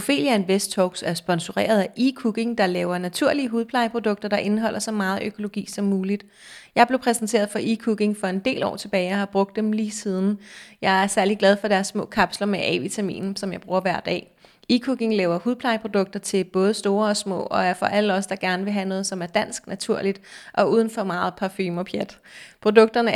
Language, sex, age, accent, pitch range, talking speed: Danish, female, 30-49, native, 195-235 Hz, 205 wpm